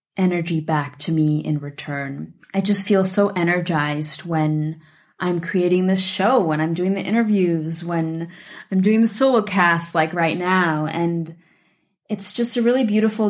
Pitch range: 170-210 Hz